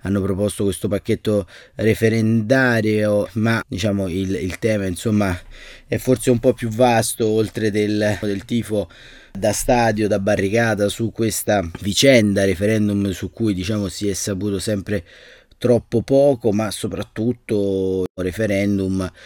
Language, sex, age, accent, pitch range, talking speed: Italian, male, 30-49, native, 100-125 Hz, 130 wpm